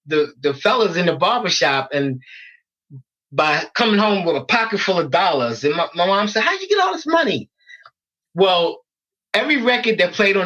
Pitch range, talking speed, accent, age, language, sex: 145-215 Hz, 195 wpm, American, 20-39, English, male